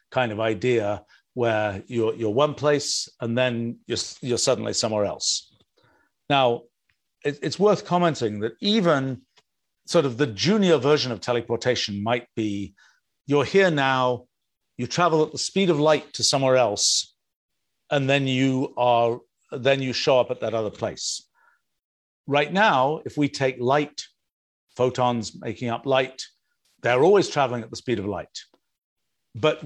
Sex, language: male, English